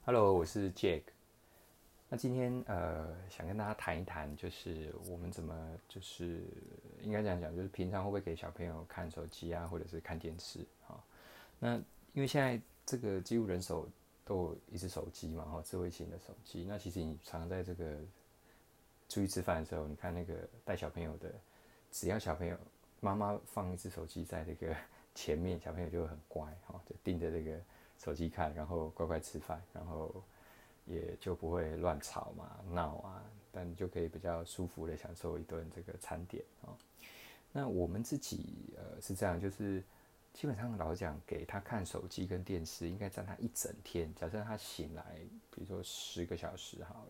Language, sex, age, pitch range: Chinese, male, 20-39, 85-100 Hz